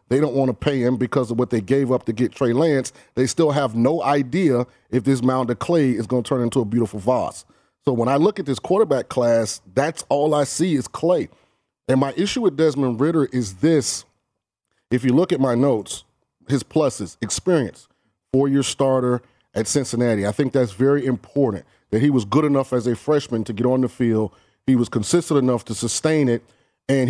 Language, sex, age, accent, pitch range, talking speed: English, male, 30-49, American, 120-140 Hz, 210 wpm